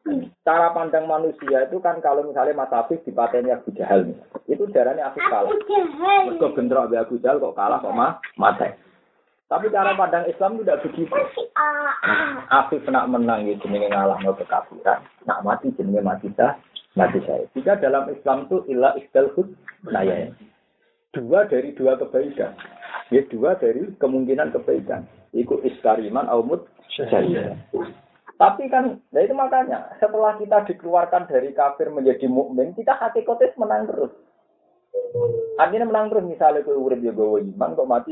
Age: 40-59